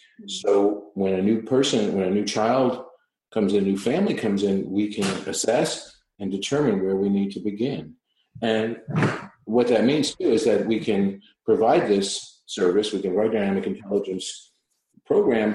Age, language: 50-69, English